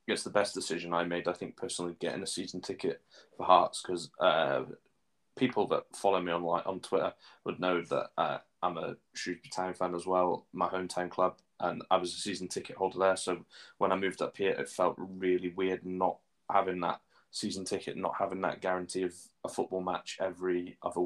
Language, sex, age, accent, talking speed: English, male, 10-29, British, 205 wpm